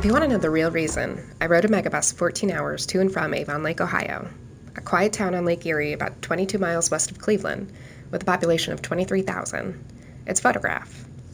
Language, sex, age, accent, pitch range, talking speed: English, female, 20-39, American, 140-190 Hz, 205 wpm